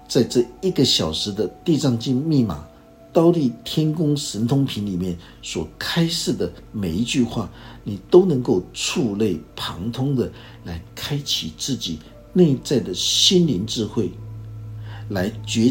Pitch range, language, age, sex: 95-130 Hz, Chinese, 60-79, male